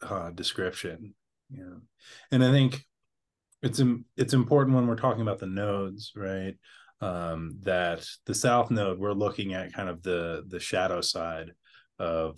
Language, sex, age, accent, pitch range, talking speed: English, male, 30-49, American, 95-120 Hz, 165 wpm